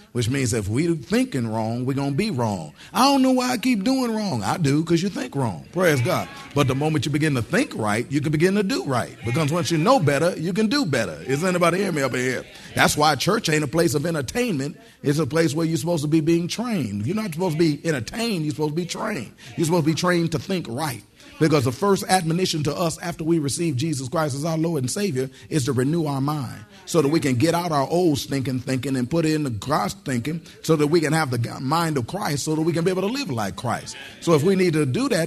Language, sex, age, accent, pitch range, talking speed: English, male, 40-59, American, 125-170 Hz, 265 wpm